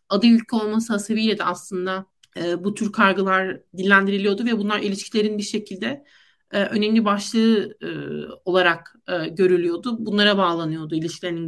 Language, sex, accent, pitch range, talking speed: Turkish, male, native, 195-235 Hz, 135 wpm